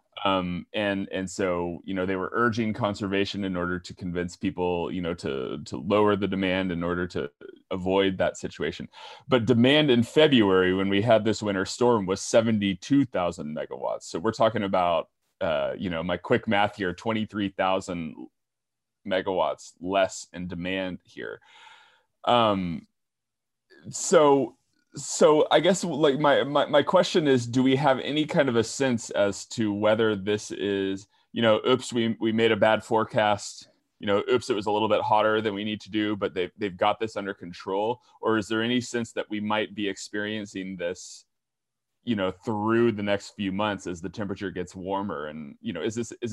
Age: 30-49